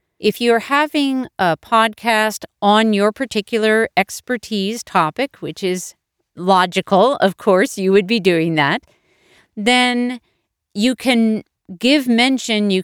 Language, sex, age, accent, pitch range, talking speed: English, female, 40-59, American, 175-235 Hz, 120 wpm